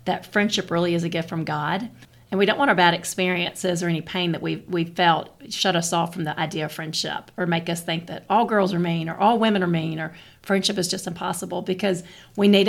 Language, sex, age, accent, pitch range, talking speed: English, female, 40-59, American, 170-195 Hz, 240 wpm